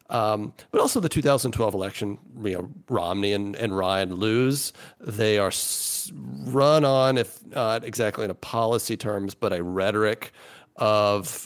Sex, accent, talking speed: male, American, 145 wpm